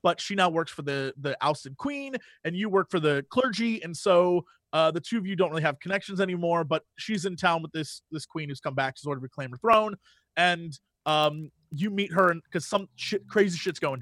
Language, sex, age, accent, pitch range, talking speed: English, male, 30-49, American, 155-205 Hz, 235 wpm